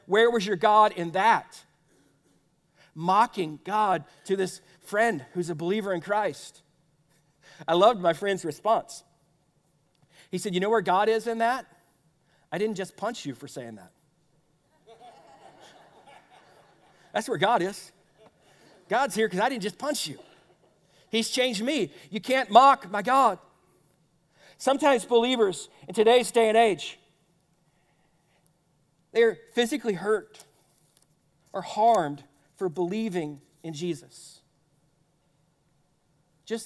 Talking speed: 125 wpm